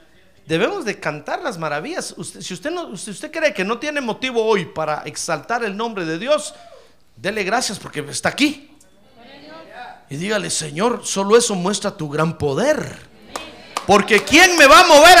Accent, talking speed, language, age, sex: Mexican, 170 wpm, Spanish, 50-69, male